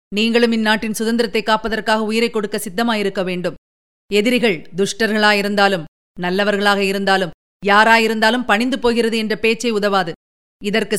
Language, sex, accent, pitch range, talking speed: Tamil, female, native, 215-270 Hz, 105 wpm